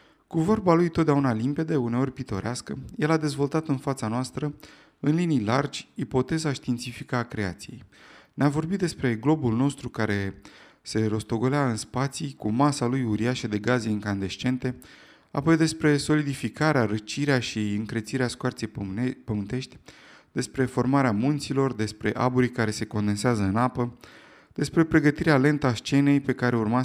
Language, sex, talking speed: Romanian, male, 140 wpm